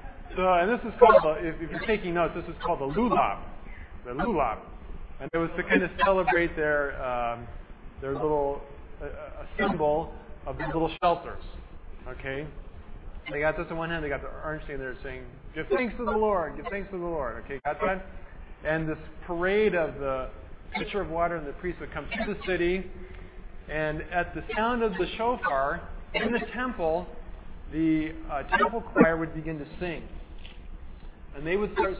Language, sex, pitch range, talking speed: English, male, 130-180 Hz, 190 wpm